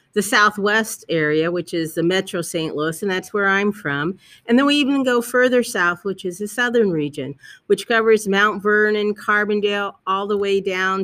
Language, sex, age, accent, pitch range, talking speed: English, female, 50-69, American, 185-235 Hz, 190 wpm